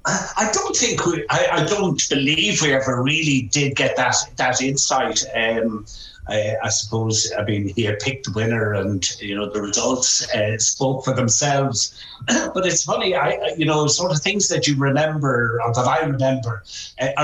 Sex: male